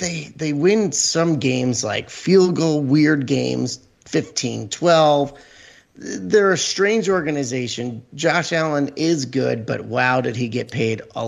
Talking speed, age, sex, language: 145 wpm, 30-49, male, English